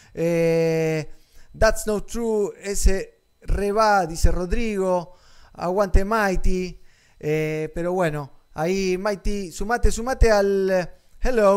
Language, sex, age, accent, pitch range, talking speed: Spanish, male, 20-39, Argentinian, 165-205 Hz, 100 wpm